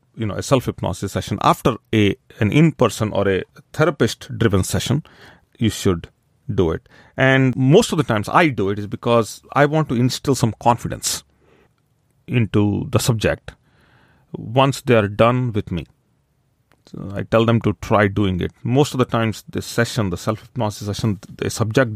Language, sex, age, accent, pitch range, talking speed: English, male, 40-59, Indian, 105-130 Hz, 165 wpm